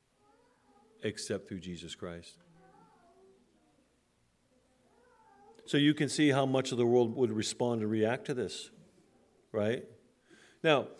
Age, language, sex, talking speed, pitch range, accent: 50-69, English, male, 115 wpm, 125-175 Hz, American